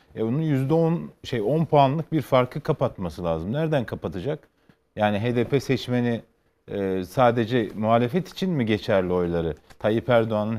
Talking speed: 135 wpm